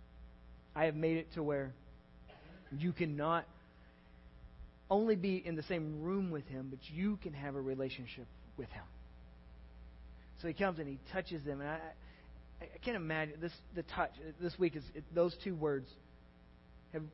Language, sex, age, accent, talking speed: English, male, 40-59, American, 170 wpm